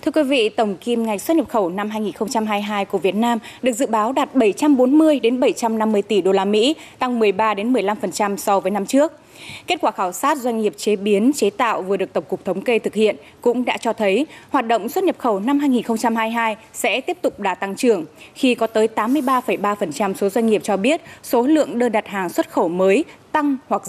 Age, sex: 20-39, female